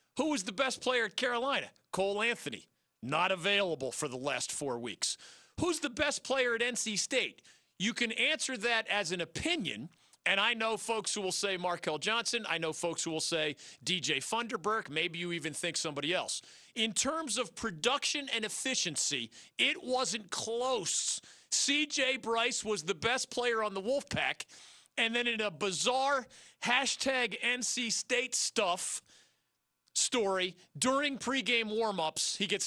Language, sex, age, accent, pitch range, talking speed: English, male, 40-59, American, 175-245 Hz, 160 wpm